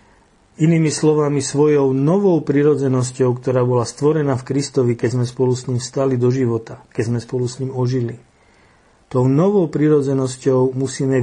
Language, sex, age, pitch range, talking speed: Slovak, male, 50-69, 120-140 Hz, 150 wpm